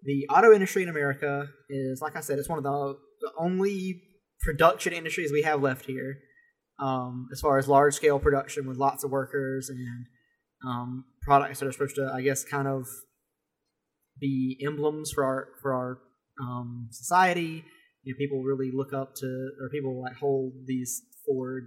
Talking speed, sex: 180 wpm, male